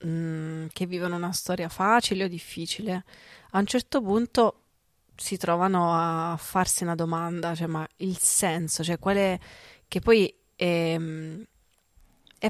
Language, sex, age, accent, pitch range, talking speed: Italian, female, 30-49, native, 170-190 Hz, 135 wpm